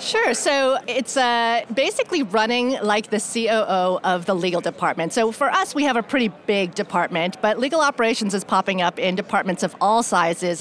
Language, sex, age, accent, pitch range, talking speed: English, female, 40-59, American, 190-230 Hz, 185 wpm